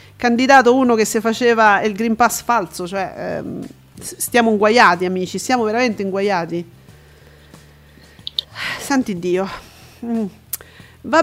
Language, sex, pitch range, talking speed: Italian, female, 200-240 Hz, 110 wpm